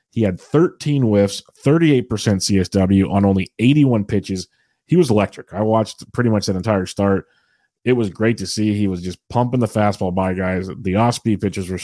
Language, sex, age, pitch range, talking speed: English, male, 30-49, 95-120 Hz, 190 wpm